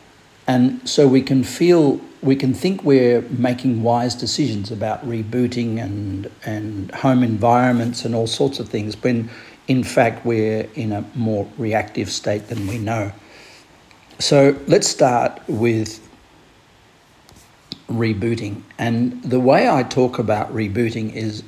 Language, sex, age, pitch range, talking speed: English, male, 50-69, 110-130 Hz, 135 wpm